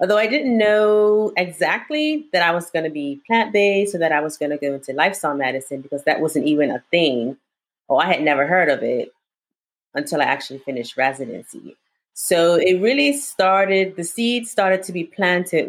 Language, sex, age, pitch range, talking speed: English, female, 30-49, 145-185 Hz, 190 wpm